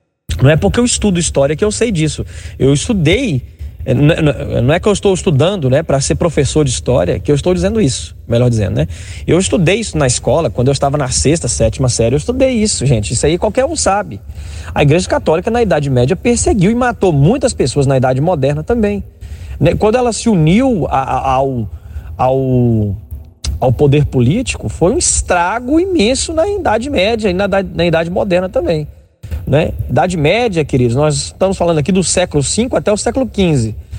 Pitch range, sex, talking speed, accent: 120-185 Hz, male, 185 wpm, Brazilian